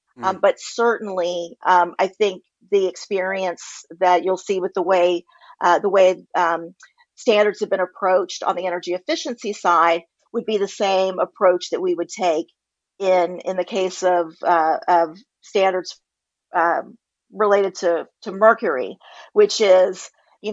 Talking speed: 150 wpm